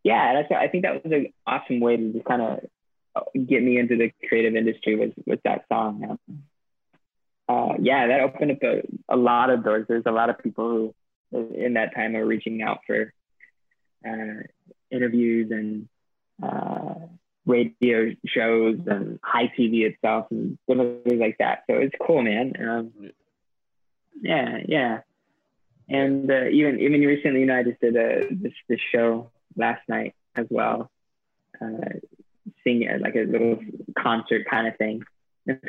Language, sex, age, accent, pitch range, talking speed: English, male, 20-39, American, 115-130 Hz, 165 wpm